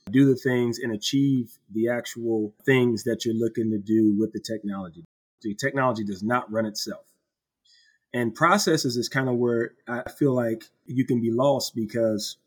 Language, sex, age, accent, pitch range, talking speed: English, male, 30-49, American, 115-135 Hz, 175 wpm